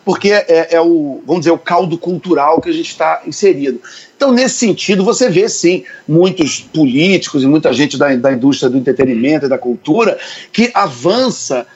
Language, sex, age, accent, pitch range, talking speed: Portuguese, male, 40-59, Brazilian, 155-215 Hz, 180 wpm